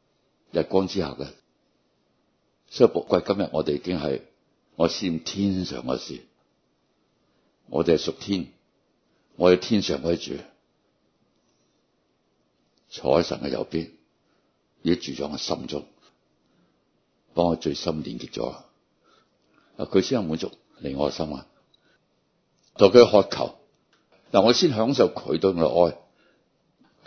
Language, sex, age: Chinese, male, 60-79